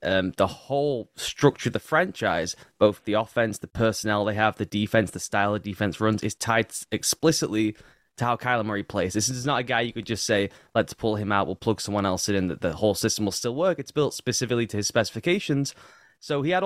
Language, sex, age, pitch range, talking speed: English, male, 10-29, 105-135 Hz, 225 wpm